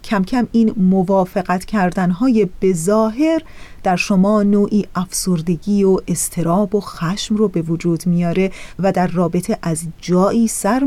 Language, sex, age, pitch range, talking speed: Persian, female, 30-49, 180-250 Hz, 135 wpm